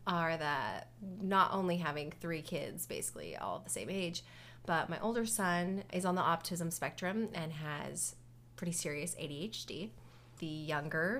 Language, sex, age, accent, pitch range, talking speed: English, female, 30-49, American, 155-215 Hz, 150 wpm